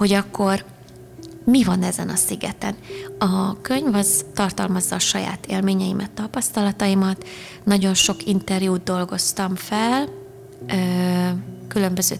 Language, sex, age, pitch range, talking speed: Hungarian, female, 20-39, 185-200 Hz, 105 wpm